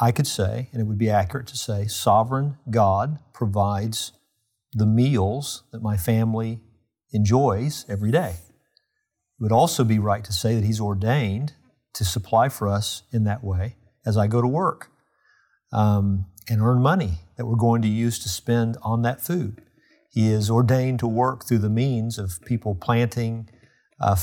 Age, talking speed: 50-69, 170 wpm